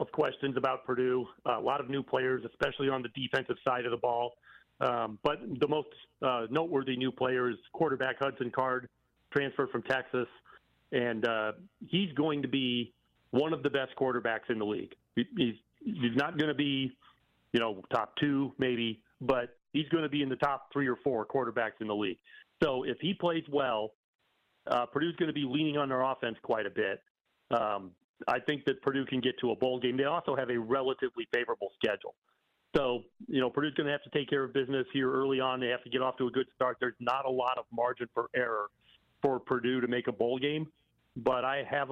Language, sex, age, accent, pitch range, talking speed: English, male, 40-59, American, 120-140 Hz, 215 wpm